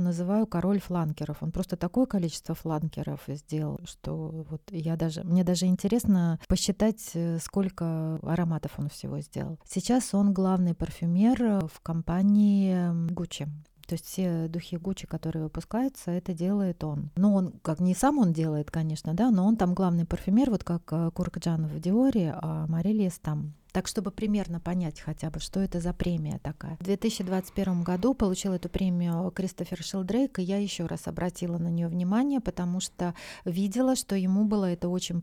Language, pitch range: Russian, 170-200 Hz